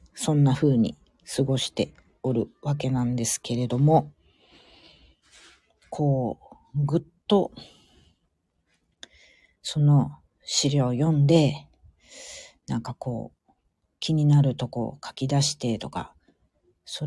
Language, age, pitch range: Japanese, 40-59, 85-145 Hz